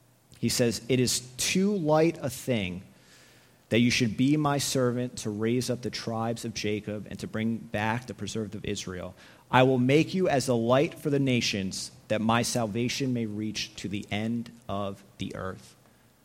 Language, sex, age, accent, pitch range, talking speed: English, male, 30-49, American, 115-160 Hz, 185 wpm